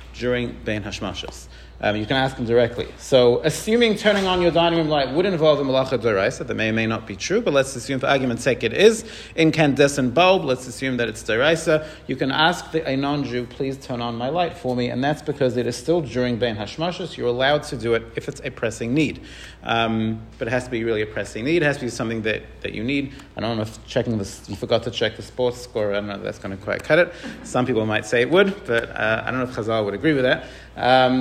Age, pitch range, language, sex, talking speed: 40-59, 115-155 Hz, English, male, 260 wpm